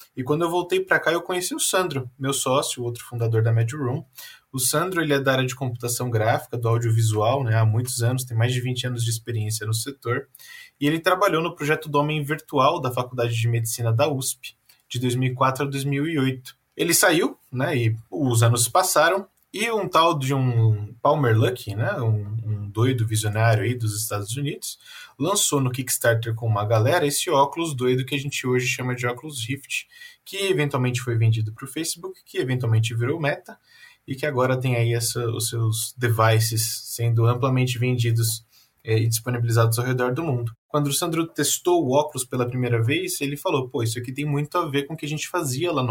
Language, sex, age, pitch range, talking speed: Portuguese, male, 20-39, 115-150 Hz, 205 wpm